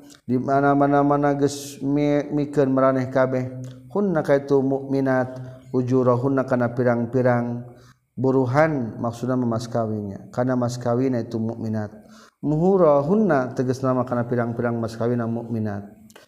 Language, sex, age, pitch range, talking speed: Indonesian, male, 40-59, 120-140 Hz, 105 wpm